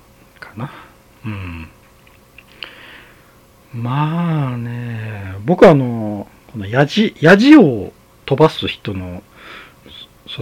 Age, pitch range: 40-59, 90-145 Hz